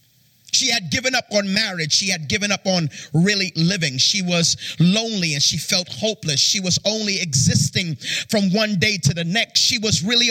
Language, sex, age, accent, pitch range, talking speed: English, male, 30-49, American, 160-220 Hz, 190 wpm